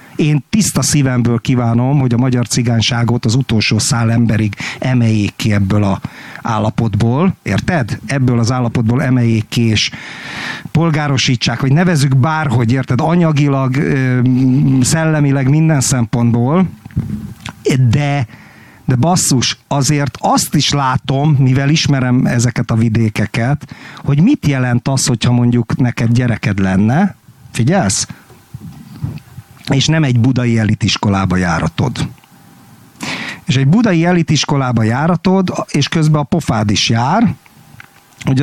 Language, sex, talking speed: Hungarian, male, 110 wpm